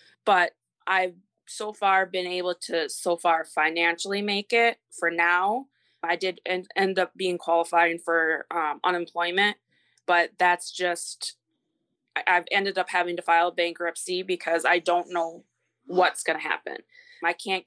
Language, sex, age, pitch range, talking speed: English, female, 20-39, 170-200 Hz, 145 wpm